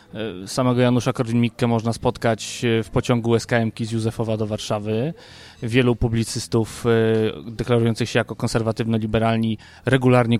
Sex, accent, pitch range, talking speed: male, native, 115-135 Hz, 115 wpm